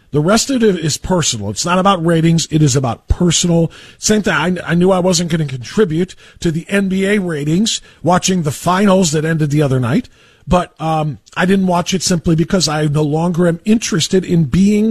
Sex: male